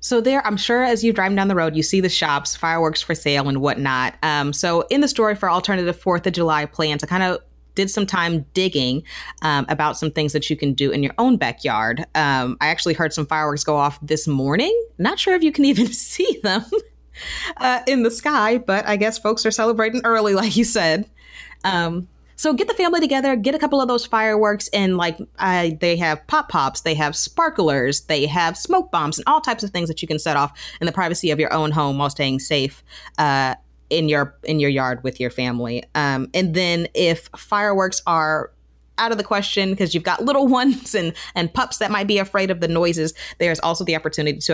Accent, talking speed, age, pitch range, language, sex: American, 225 wpm, 30-49, 145-215 Hz, English, female